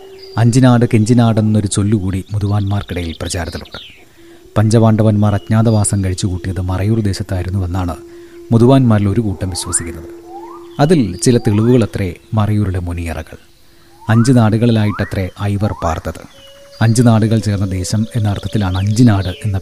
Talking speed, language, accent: 100 wpm, Malayalam, native